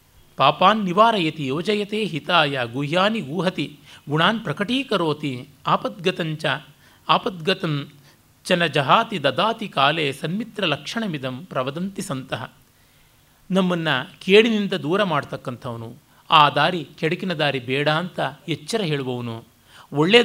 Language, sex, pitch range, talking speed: Kannada, male, 135-185 Hz, 85 wpm